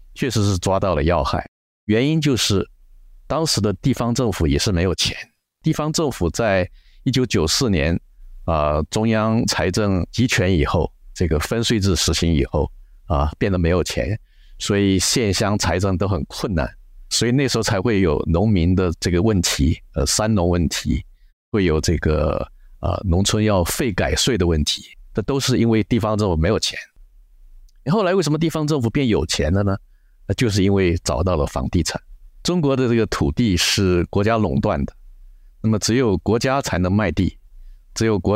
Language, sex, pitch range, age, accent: Chinese, male, 85-110 Hz, 50-69, native